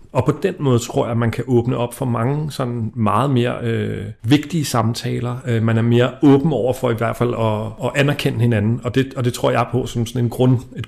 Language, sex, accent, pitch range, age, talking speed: Danish, male, native, 110-125 Hz, 40-59, 210 wpm